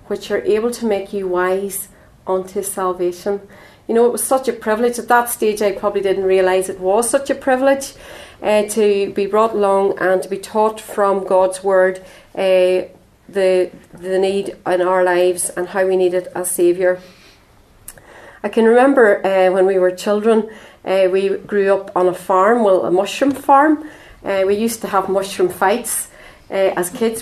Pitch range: 185-215 Hz